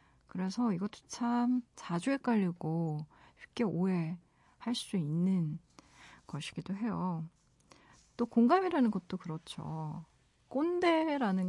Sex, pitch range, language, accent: female, 175-240 Hz, Korean, native